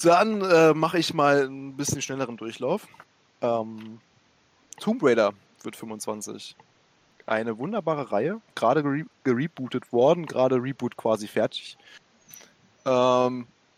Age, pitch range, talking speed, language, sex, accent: 20-39, 115-135 Hz, 110 wpm, German, male, German